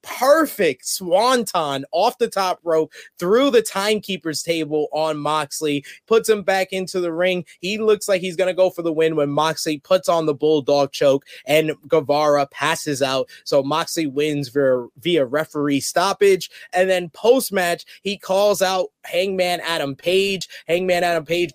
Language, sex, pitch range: English, male, 150-180 Hz